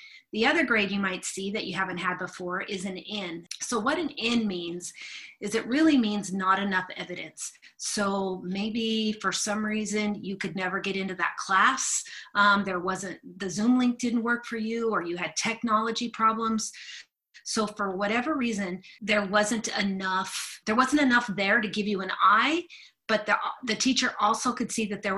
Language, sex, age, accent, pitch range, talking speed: English, female, 30-49, American, 190-225 Hz, 185 wpm